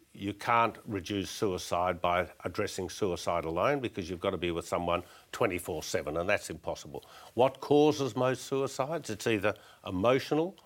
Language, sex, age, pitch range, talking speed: English, male, 60-79, 95-115 Hz, 145 wpm